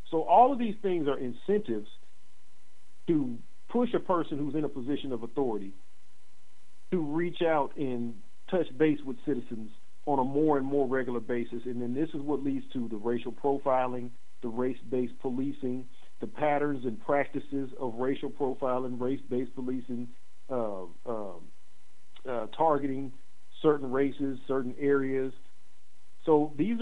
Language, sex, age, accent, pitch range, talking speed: English, male, 50-69, American, 125-150 Hz, 145 wpm